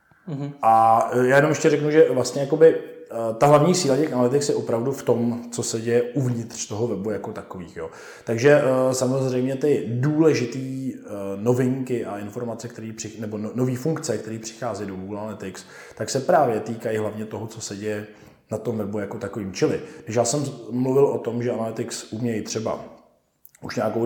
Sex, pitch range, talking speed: male, 110-125 Hz, 170 wpm